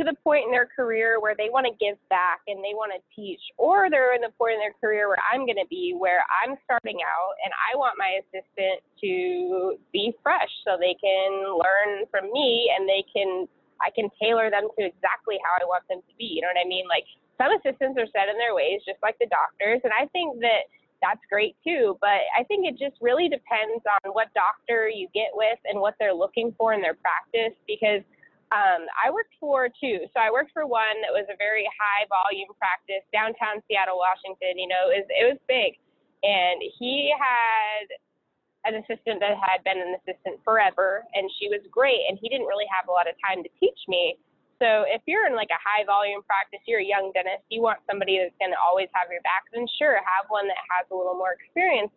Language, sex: English, female